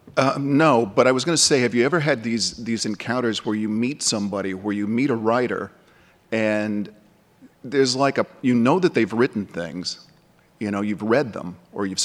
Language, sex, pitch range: English, male, 105-130 Hz